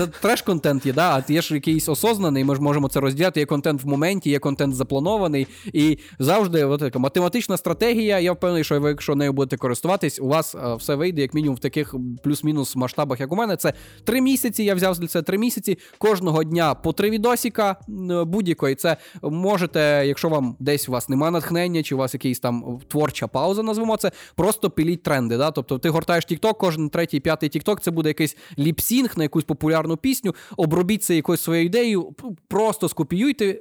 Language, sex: Ukrainian, male